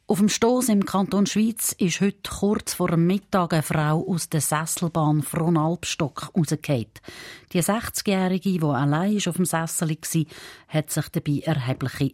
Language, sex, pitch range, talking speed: German, female, 140-190 Hz, 155 wpm